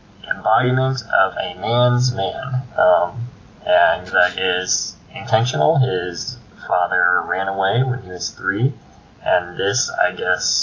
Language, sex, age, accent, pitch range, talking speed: English, male, 20-39, American, 100-125 Hz, 125 wpm